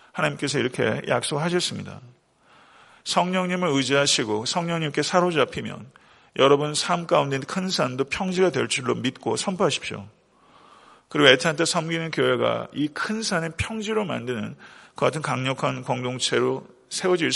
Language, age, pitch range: Korean, 40-59, 125-165 Hz